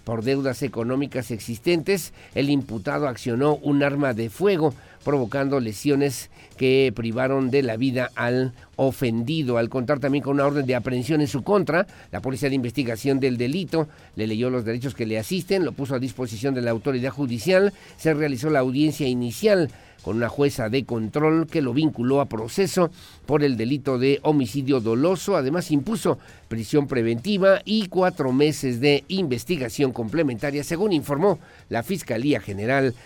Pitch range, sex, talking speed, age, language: 125-155 Hz, male, 160 wpm, 50-69, Spanish